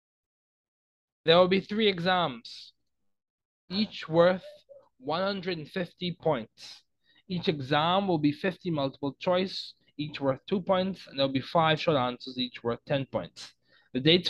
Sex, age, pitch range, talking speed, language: male, 20-39, 125-170 Hz, 140 wpm, English